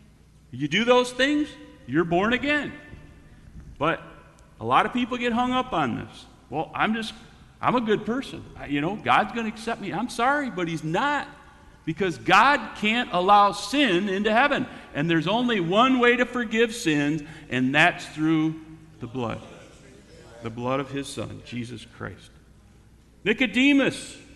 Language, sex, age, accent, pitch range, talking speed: English, male, 50-69, American, 155-245 Hz, 155 wpm